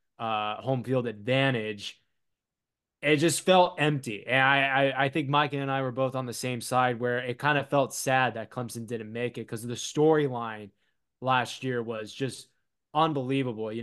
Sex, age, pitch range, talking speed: male, 20-39, 115-135 Hz, 180 wpm